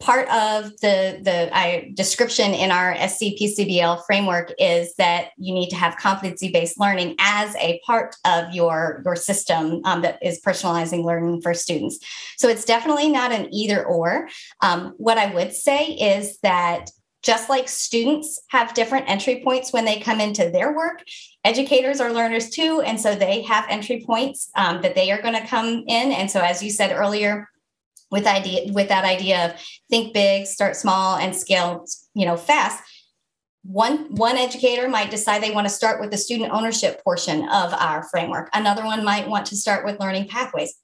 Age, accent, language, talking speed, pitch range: 30-49, American, English, 180 wpm, 185-235 Hz